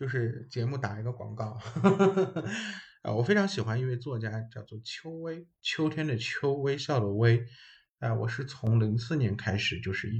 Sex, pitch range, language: male, 105-130 Hz, Chinese